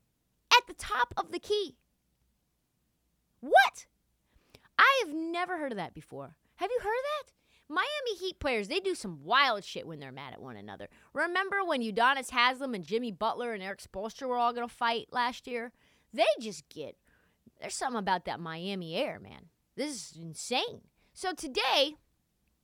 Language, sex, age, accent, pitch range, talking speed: English, female, 30-49, American, 205-335 Hz, 170 wpm